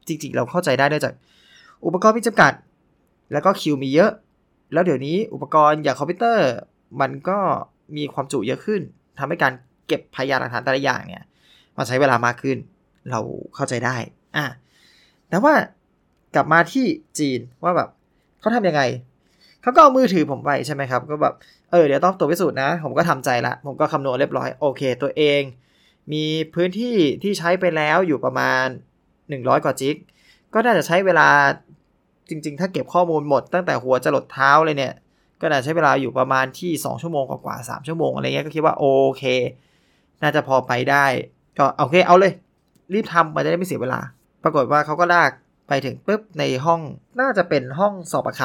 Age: 20-39